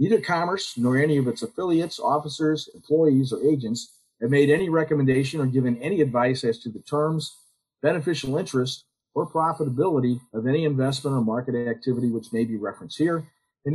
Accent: American